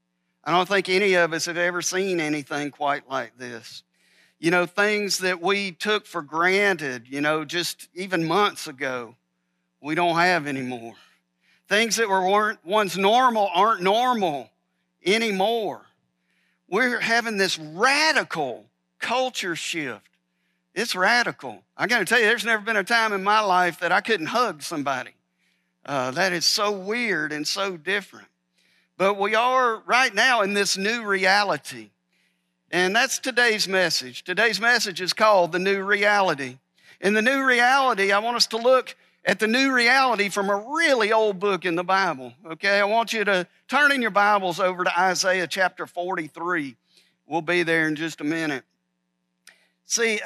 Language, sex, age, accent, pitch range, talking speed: English, male, 50-69, American, 150-215 Hz, 165 wpm